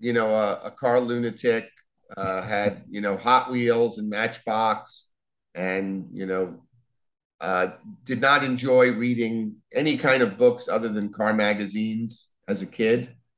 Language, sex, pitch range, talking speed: English, male, 95-120 Hz, 150 wpm